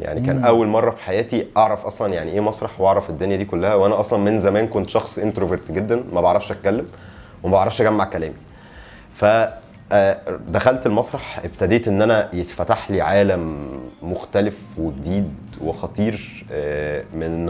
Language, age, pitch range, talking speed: Arabic, 30-49, 85-110 Hz, 145 wpm